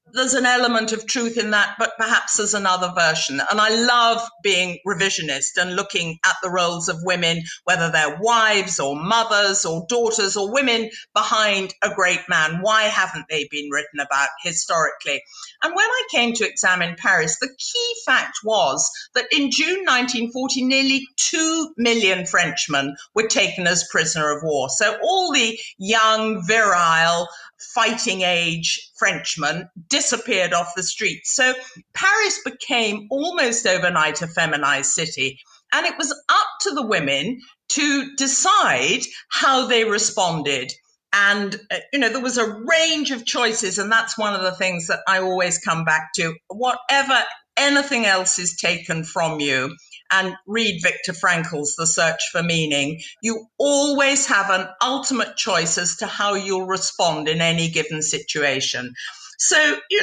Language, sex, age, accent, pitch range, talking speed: English, female, 50-69, British, 175-240 Hz, 155 wpm